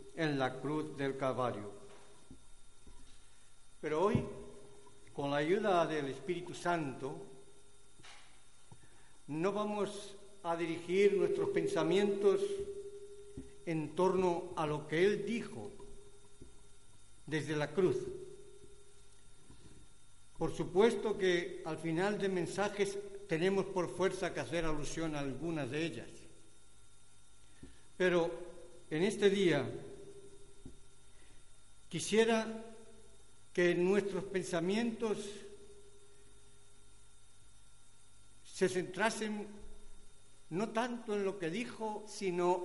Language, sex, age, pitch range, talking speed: Spanish, male, 60-79, 135-205 Hz, 90 wpm